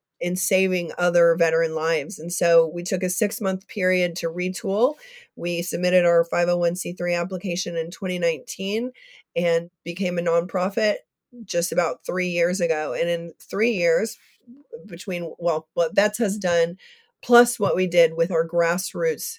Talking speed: 145 wpm